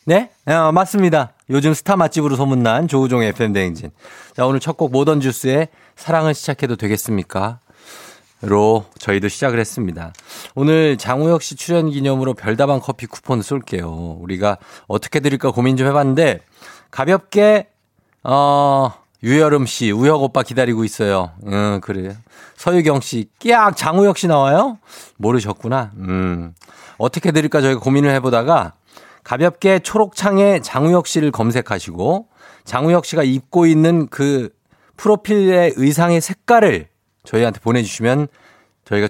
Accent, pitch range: native, 110-160 Hz